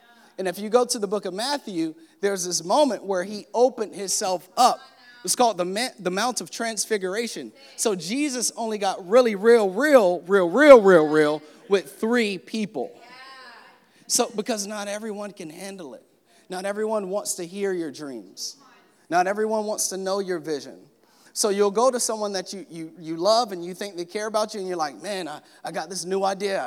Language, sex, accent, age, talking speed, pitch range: English, male, American, 30-49, 190 wpm, 175-230 Hz